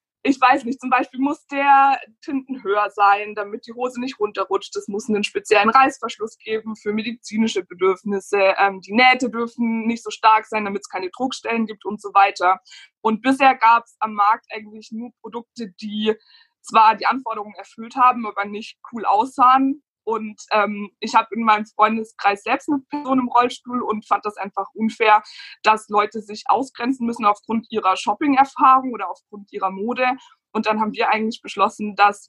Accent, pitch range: German, 205-245 Hz